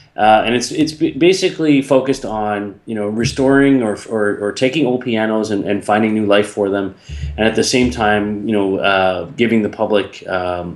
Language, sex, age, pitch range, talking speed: English, male, 20-39, 100-115 Hz, 195 wpm